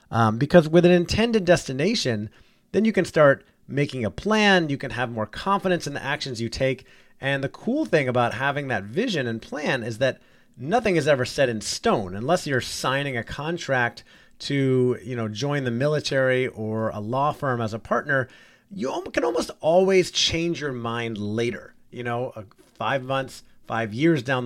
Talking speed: 180 wpm